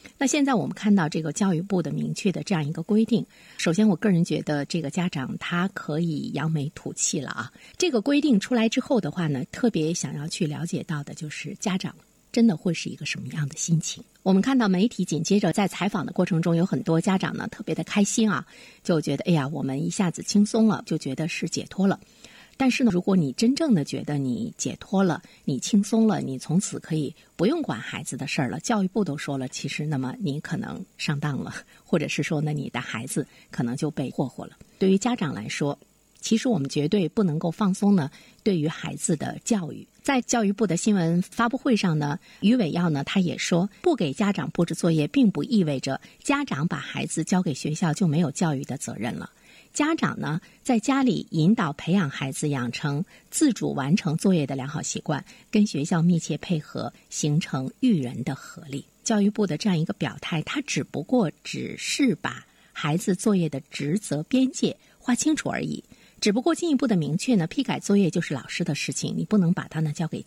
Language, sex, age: Chinese, female, 50-69